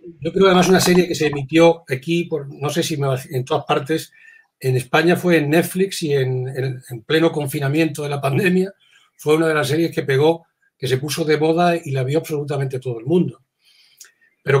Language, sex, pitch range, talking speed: Spanish, male, 140-175 Hz, 200 wpm